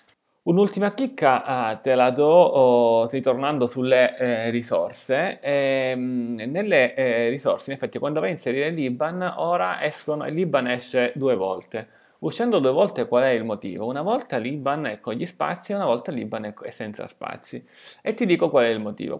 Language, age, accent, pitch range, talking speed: Italian, 30-49, native, 120-160 Hz, 170 wpm